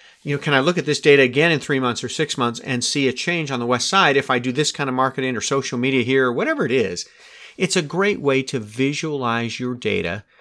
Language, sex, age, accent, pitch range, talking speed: English, male, 40-59, American, 130-175 Hz, 265 wpm